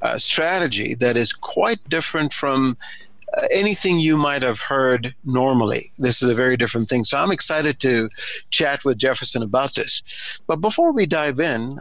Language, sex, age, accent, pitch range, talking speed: English, male, 50-69, American, 130-170 Hz, 170 wpm